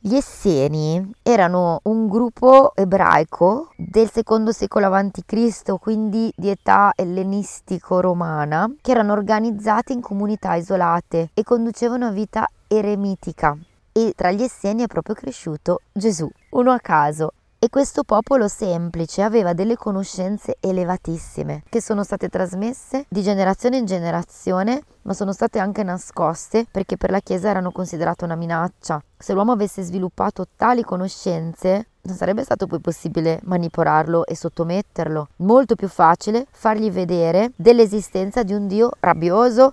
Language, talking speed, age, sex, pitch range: Italian, 135 wpm, 20-39, female, 170-220 Hz